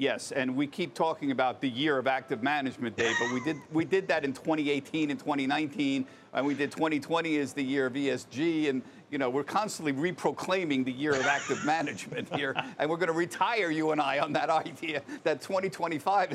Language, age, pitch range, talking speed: English, 50-69, 125-160 Hz, 205 wpm